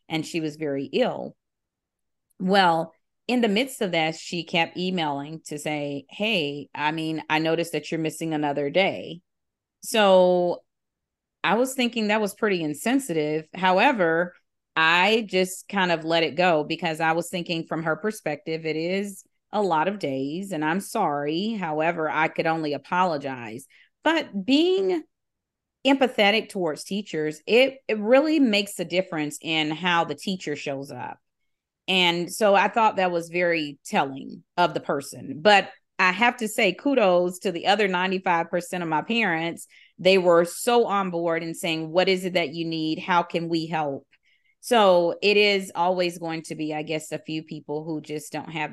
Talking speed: 170 wpm